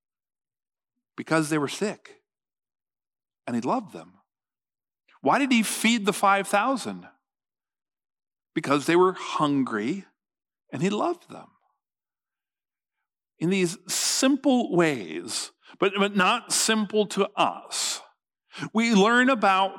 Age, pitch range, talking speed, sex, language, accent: 50-69, 130-195 Hz, 105 wpm, male, English, American